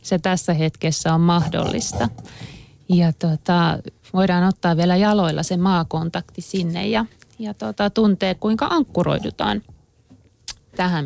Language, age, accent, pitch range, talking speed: Finnish, 30-49, native, 115-195 Hz, 105 wpm